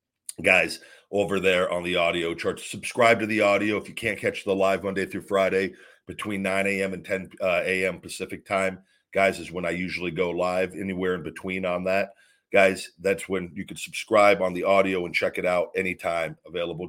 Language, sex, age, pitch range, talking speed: English, male, 40-59, 90-110 Hz, 195 wpm